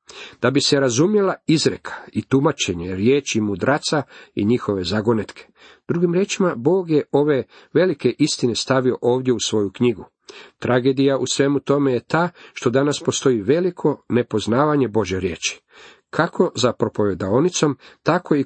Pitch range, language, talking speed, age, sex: 110-140 Hz, Croatian, 135 wpm, 50-69, male